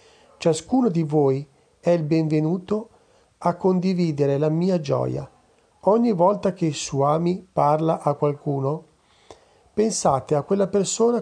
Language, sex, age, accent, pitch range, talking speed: Italian, male, 40-59, native, 150-185 Hz, 120 wpm